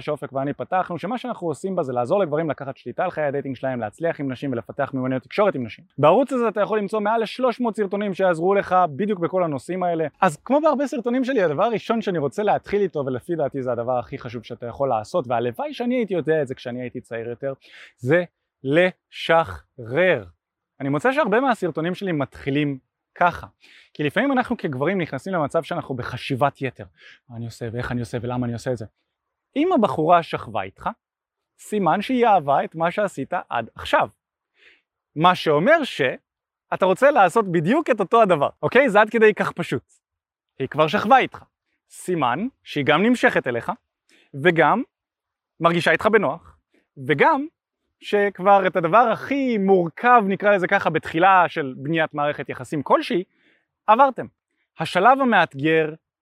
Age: 20-39